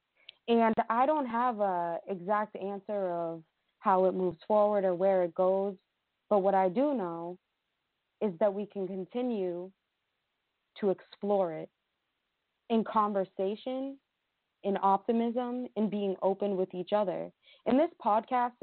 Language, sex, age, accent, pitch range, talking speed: English, female, 20-39, American, 185-210 Hz, 135 wpm